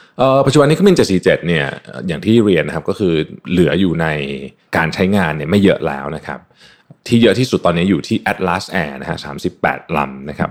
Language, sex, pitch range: Thai, male, 80-110 Hz